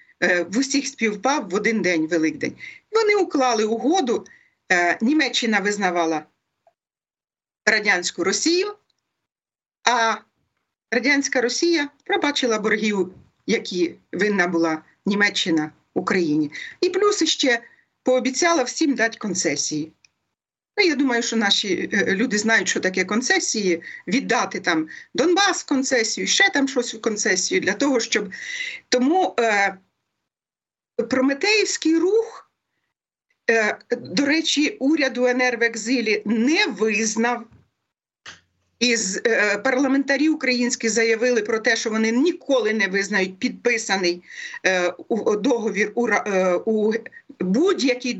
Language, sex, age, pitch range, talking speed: Ukrainian, female, 40-59, 205-285 Hz, 100 wpm